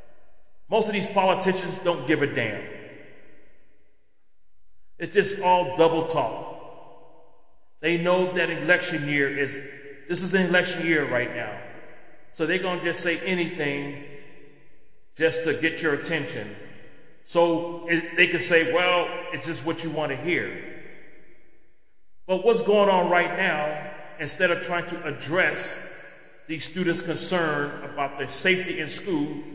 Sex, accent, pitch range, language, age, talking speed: male, American, 140-170 Hz, English, 40-59, 140 wpm